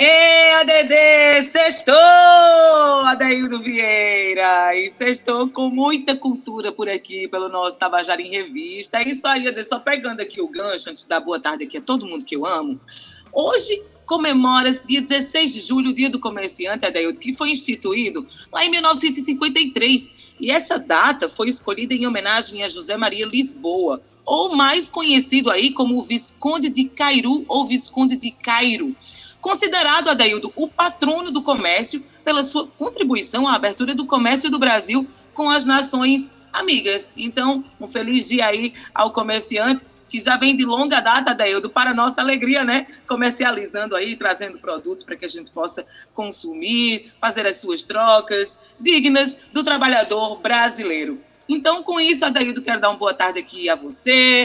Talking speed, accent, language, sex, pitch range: 160 wpm, Brazilian, Portuguese, female, 220-295 Hz